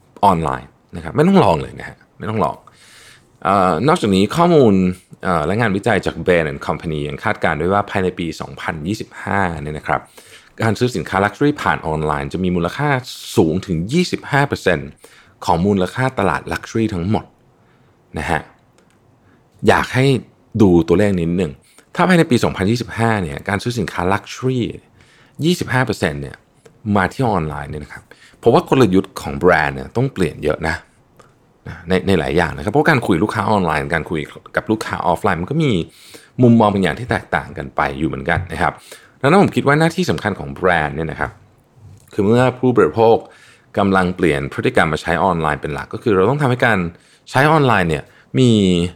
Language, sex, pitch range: Thai, male, 85-120 Hz